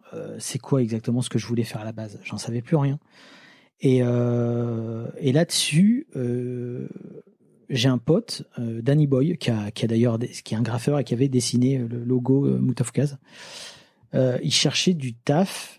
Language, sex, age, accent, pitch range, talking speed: French, male, 30-49, French, 120-155 Hz, 190 wpm